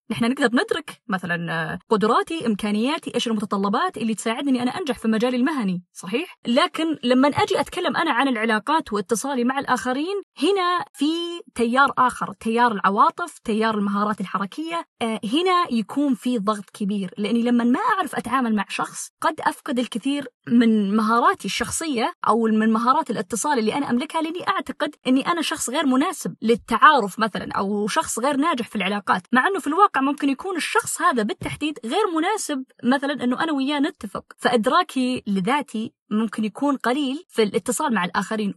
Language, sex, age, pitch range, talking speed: Arabic, female, 20-39, 220-285 Hz, 155 wpm